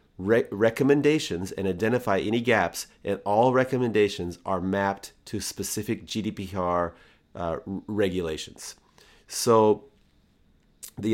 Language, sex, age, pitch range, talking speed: English, male, 40-59, 95-120 Hz, 95 wpm